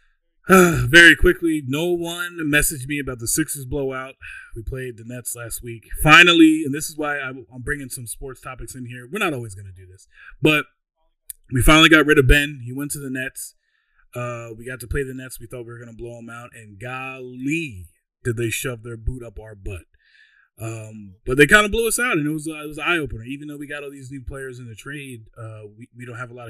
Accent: American